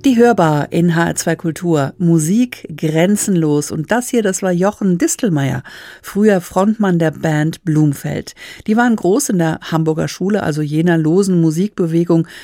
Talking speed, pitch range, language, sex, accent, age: 145 wpm, 160-205 Hz, German, female, German, 50-69